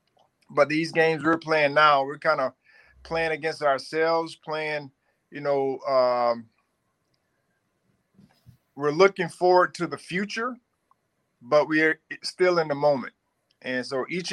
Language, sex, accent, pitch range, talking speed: English, male, American, 130-170 Hz, 130 wpm